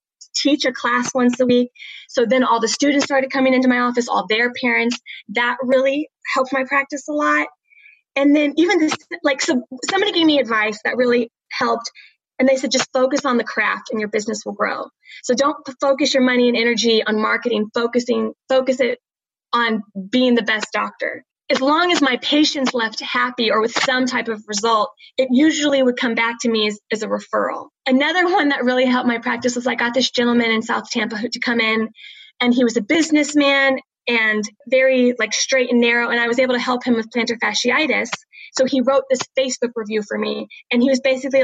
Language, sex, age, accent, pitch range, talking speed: English, female, 20-39, American, 230-270 Hz, 210 wpm